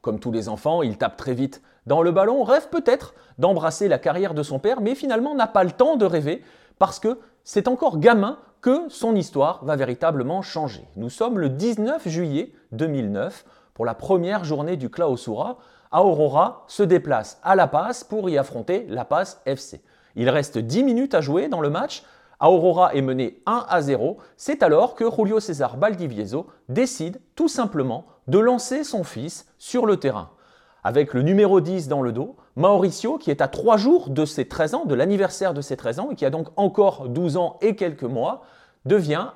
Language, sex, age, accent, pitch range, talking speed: French, male, 40-59, French, 135-215 Hz, 195 wpm